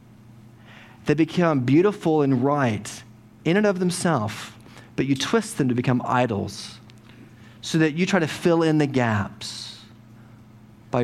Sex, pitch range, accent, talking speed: male, 115-155 Hz, American, 140 wpm